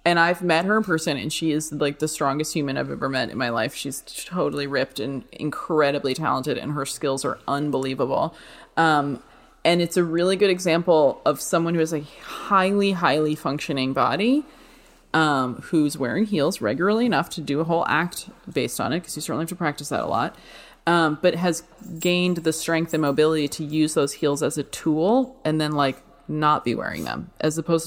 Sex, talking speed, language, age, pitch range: female, 200 wpm, English, 20-39, 145-170 Hz